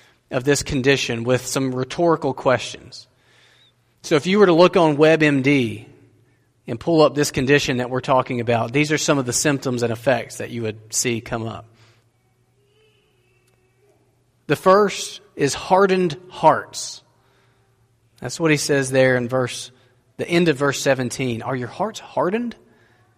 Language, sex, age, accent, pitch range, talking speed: English, male, 30-49, American, 120-150 Hz, 155 wpm